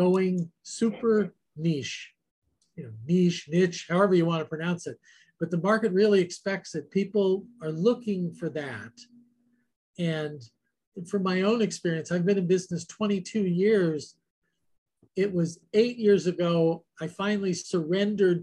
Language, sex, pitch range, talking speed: English, male, 165-210 Hz, 140 wpm